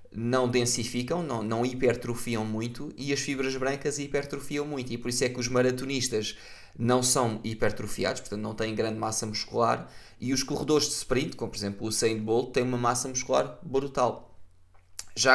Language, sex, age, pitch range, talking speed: Portuguese, male, 20-39, 115-140 Hz, 175 wpm